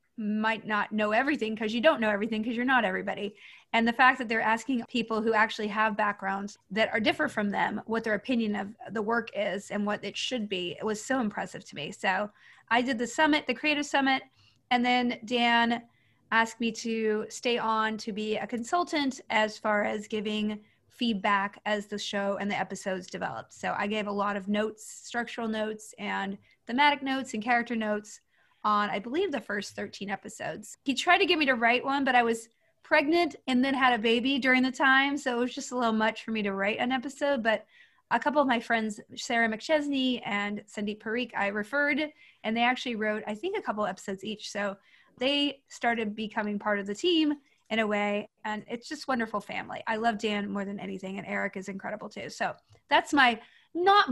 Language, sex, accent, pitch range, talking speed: English, female, American, 210-260 Hz, 210 wpm